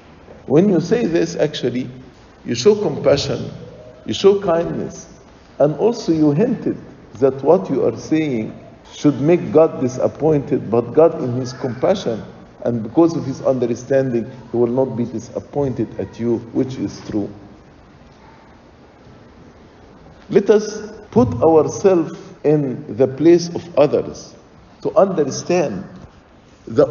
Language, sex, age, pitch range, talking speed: English, male, 50-69, 125-165 Hz, 125 wpm